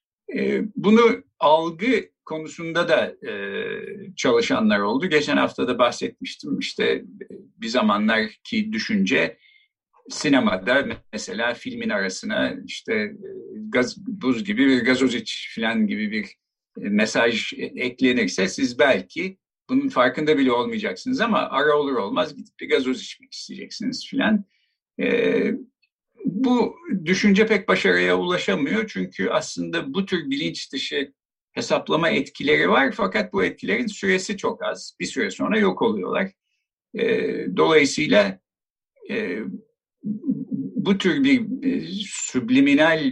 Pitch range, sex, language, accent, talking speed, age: 185-250 Hz, male, Turkish, native, 105 wpm, 50-69